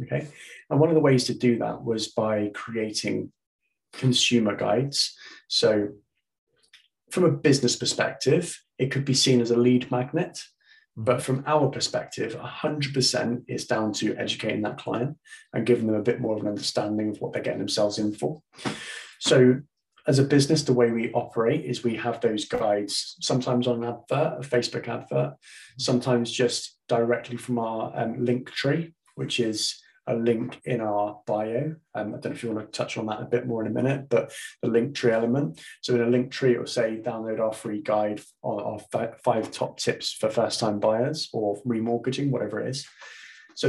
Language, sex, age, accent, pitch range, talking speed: English, male, 20-39, British, 110-135 Hz, 190 wpm